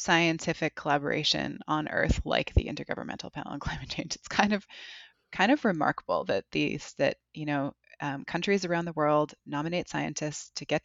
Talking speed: 170 wpm